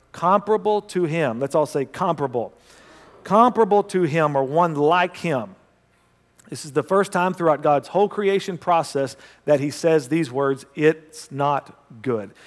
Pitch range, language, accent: 140-185 Hz, English, American